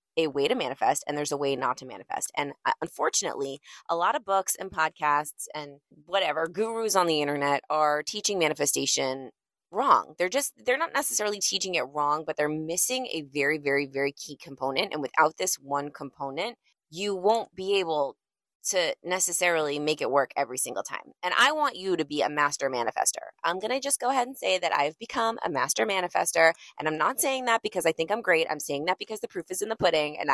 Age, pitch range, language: 20-39, 150-220 Hz, English